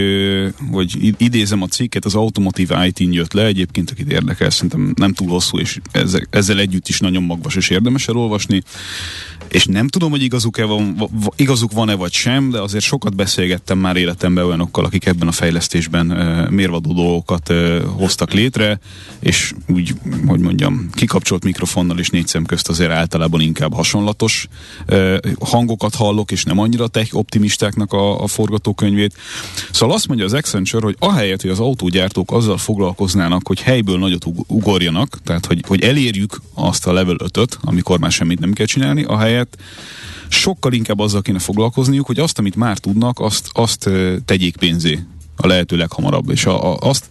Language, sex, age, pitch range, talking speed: Hungarian, male, 30-49, 90-110 Hz, 165 wpm